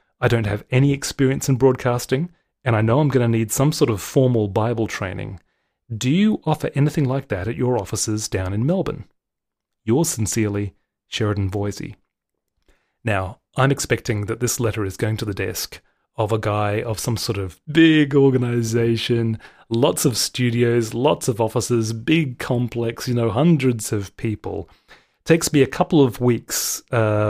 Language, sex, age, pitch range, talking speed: English, male, 30-49, 110-135 Hz, 165 wpm